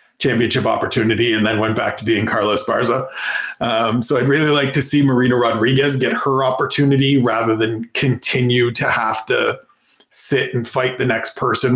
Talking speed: 175 wpm